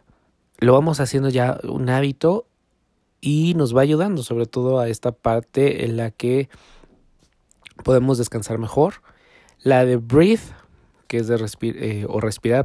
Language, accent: Spanish, Mexican